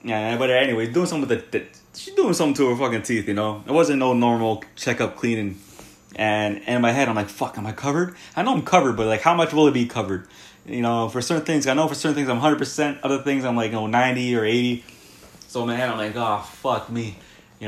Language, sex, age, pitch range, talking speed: English, male, 20-39, 105-140 Hz, 250 wpm